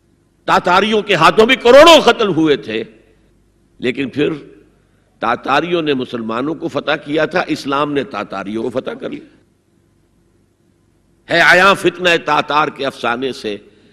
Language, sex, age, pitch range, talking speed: Urdu, male, 60-79, 110-180 Hz, 135 wpm